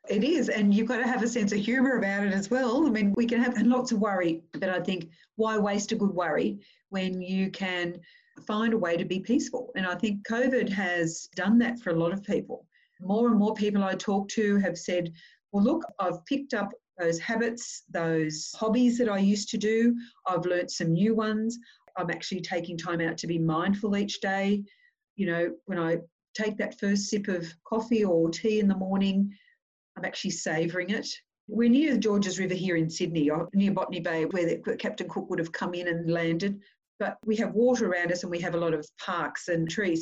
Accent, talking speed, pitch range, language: Australian, 215 wpm, 170-220 Hz, English